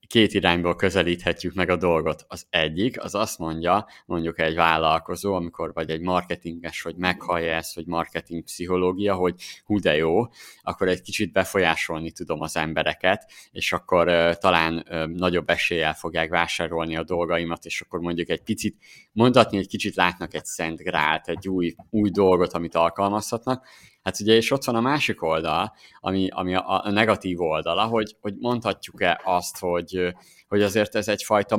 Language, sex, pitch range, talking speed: Hungarian, male, 85-100 Hz, 160 wpm